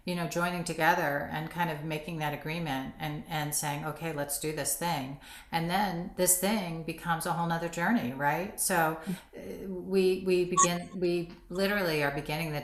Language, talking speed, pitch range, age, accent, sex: English, 175 wpm, 155-190 Hz, 40-59, American, female